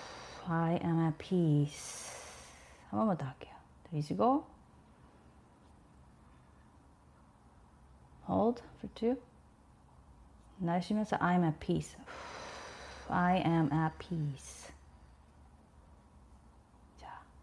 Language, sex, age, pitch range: Korean, female, 30-49, 150-215 Hz